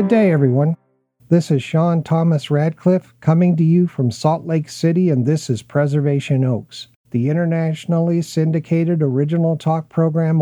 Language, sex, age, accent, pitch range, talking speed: English, male, 50-69, American, 140-165 Hz, 150 wpm